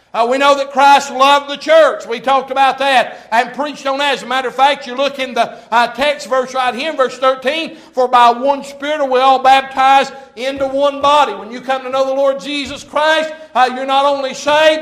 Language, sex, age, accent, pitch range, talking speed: English, male, 60-79, American, 245-295 Hz, 230 wpm